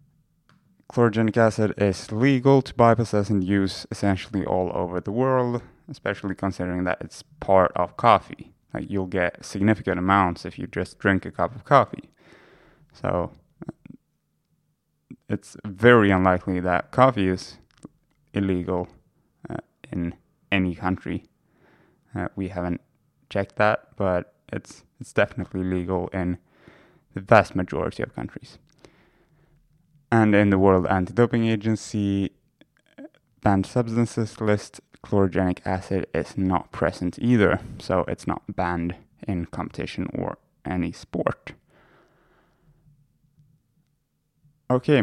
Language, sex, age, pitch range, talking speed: English, male, 20-39, 95-120 Hz, 115 wpm